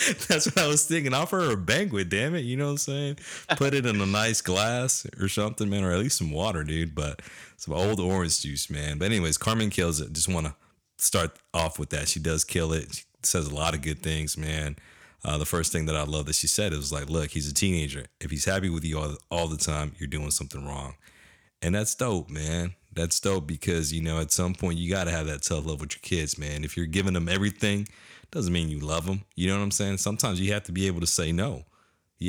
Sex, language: male, English